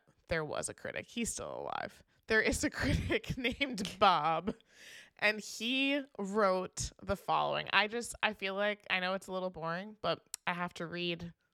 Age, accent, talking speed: 20-39, American, 175 wpm